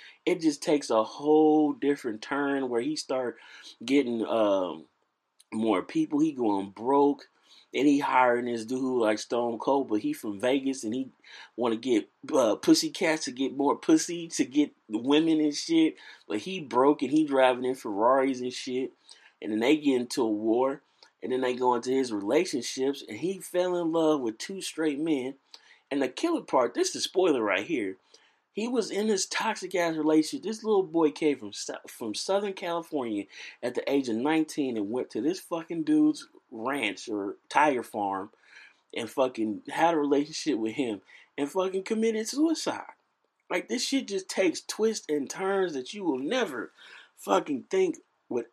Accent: American